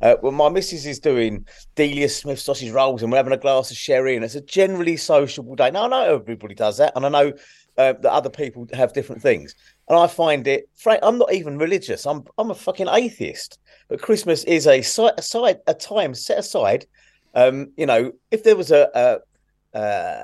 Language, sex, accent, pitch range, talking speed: English, male, British, 135-185 Hz, 215 wpm